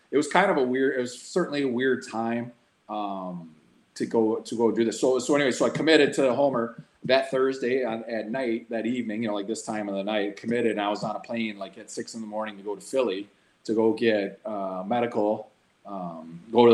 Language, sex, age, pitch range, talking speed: English, male, 30-49, 100-120 Hz, 240 wpm